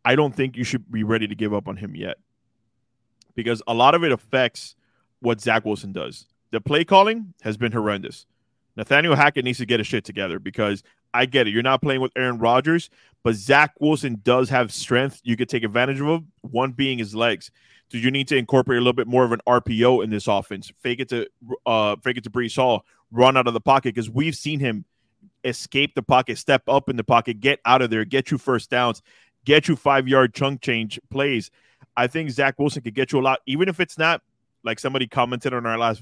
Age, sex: 20-39, male